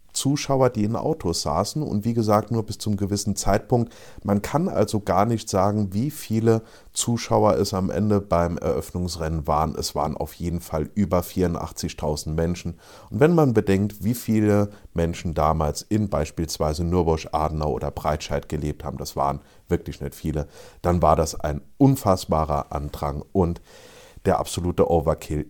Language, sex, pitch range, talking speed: German, male, 80-110 Hz, 160 wpm